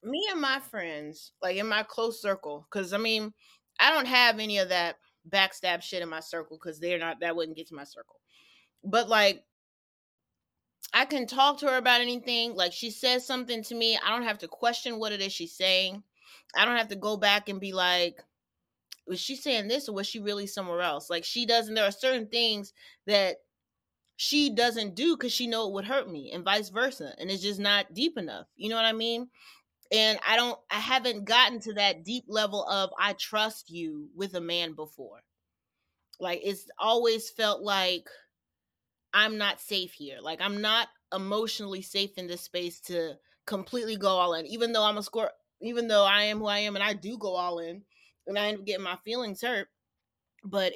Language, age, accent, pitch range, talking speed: English, 30-49, American, 180-230 Hz, 205 wpm